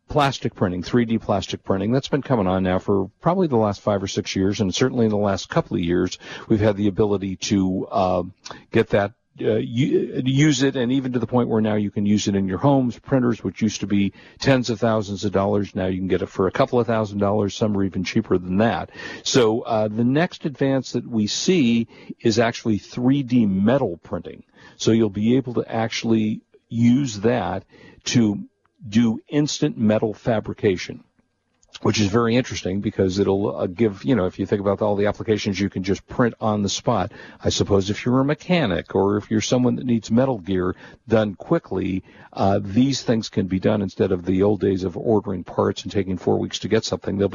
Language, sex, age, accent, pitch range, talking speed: English, male, 50-69, American, 100-125 Hz, 210 wpm